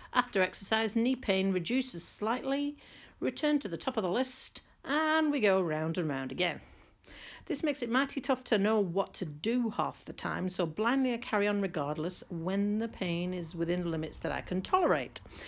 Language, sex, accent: English, female, British